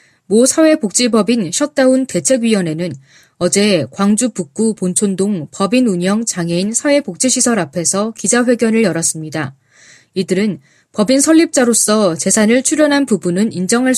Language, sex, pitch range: Korean, female, 175-255 Hz